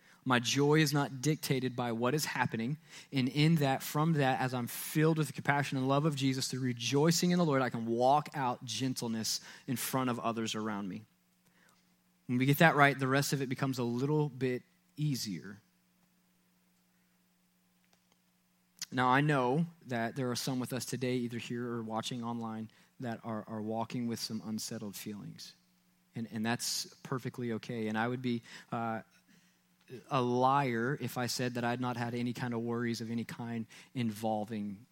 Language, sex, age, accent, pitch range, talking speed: English, male, 20-39, American, 110-140 Hz, 180 wpm